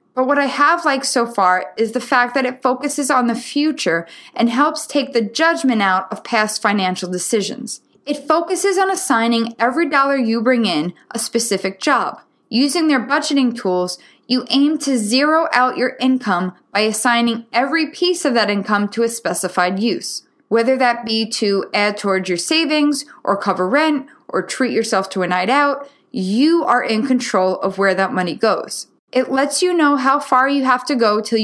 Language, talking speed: English, 185 wpm